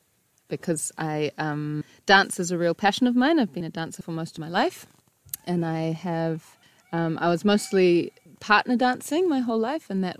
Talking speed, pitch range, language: 195 wpm, 160-200 Hz, English